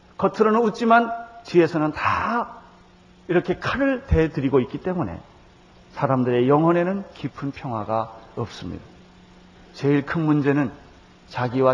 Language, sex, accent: Korean, male, native